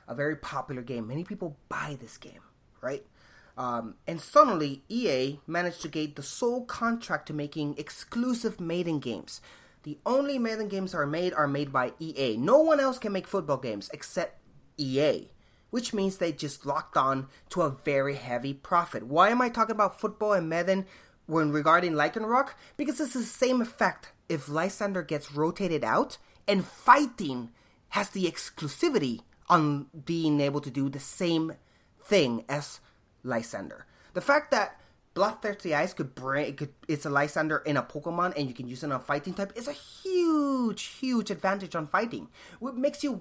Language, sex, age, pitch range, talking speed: English, male, 30-49, 150-225 Hz, 175 wpm